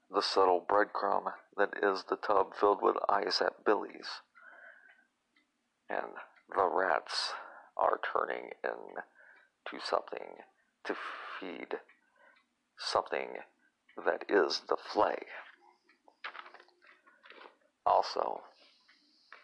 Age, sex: 40-59, male